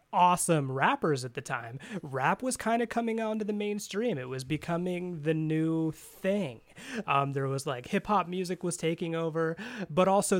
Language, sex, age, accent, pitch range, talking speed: English, male, 20-39, American, 145-180 Hz, 175 wpm